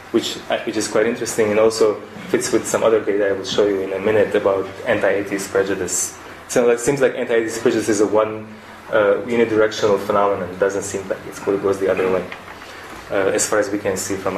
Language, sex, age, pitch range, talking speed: English, male, 20-39, 100-135 Hz, 215 wpm